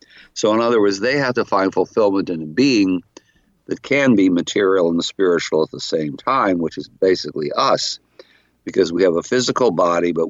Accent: American